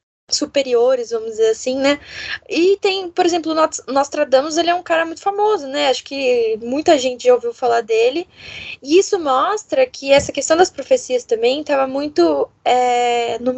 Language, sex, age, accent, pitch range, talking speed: Portuguese, female, 10-29, Brazilian, 245-355 Hz, 170 wpm